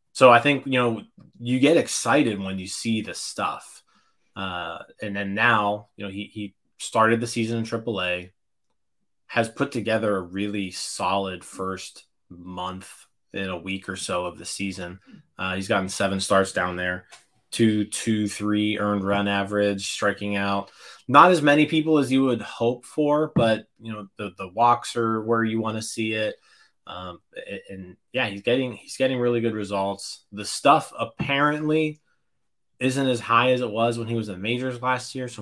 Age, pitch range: 20-39, 100-125 Hz